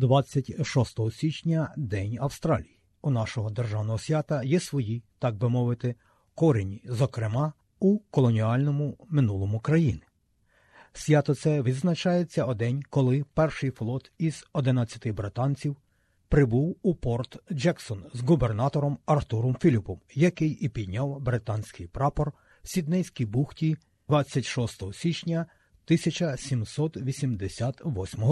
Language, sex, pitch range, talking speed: Ukrainian, male, 110-155 Hz, 105 wpm